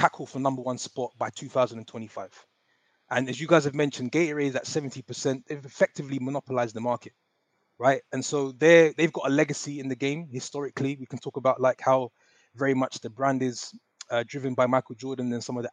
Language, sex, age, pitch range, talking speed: English, male, 20-39, 130-155 Hz, 200 wpm